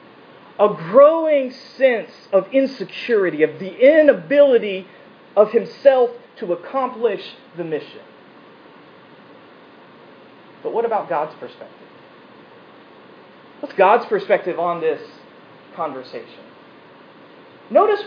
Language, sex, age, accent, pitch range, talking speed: English, male, 40-59, American, 205-300 Hz, 85 wpm